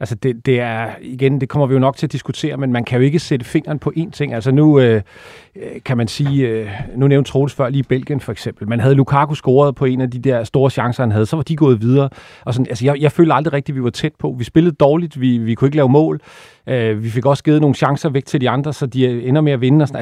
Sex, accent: male, native